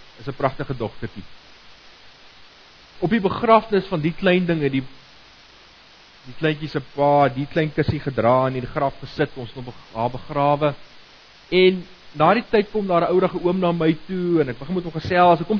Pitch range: 130-180 Hz